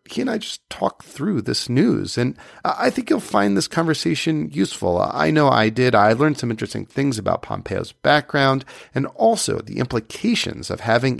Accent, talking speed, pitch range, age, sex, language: American, 175 wpm, 110-150 Hz, 40-59, male, English